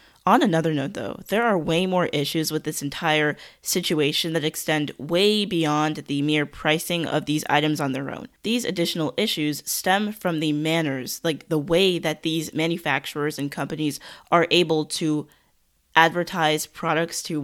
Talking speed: 160 wpm